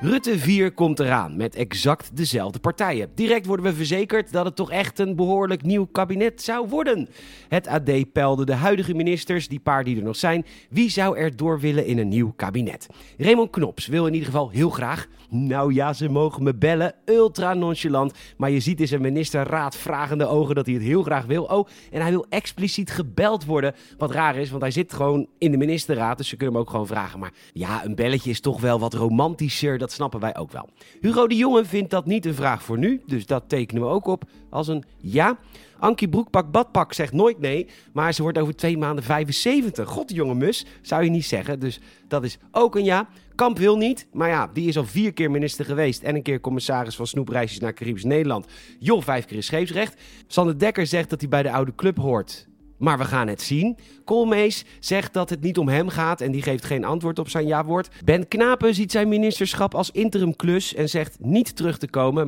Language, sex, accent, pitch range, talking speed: Dutch, male, Dutch, 130-185 Hz, 220 wpm